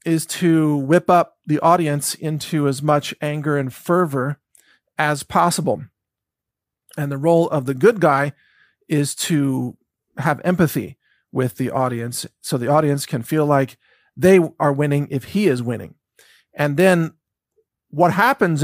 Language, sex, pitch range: English, male, 145-180 Hz